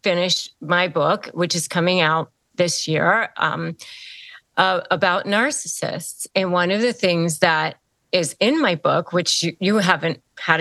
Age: 40-59